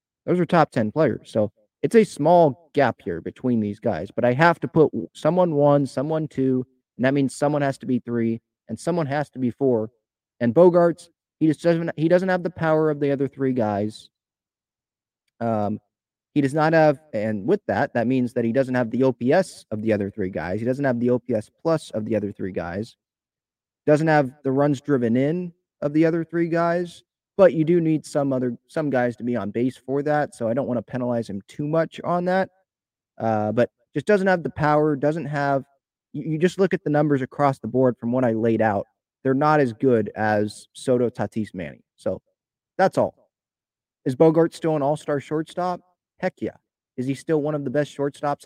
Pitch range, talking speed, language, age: 115-155 Hz, 210 wpm, English, 30-49